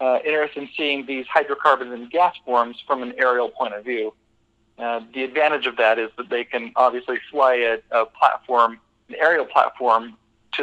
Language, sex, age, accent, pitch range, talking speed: English, male, 40-59, American, 115-140 Hz, 185 wpm